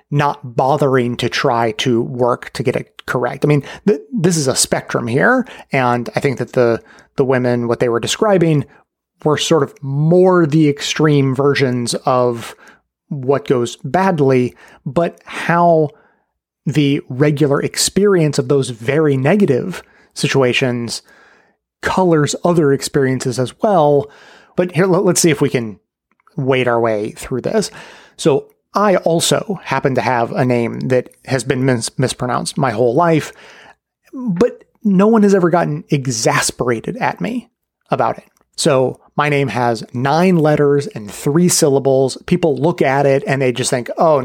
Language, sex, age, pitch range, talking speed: English, male, 30-49, 130-170 Hz, 150 wpm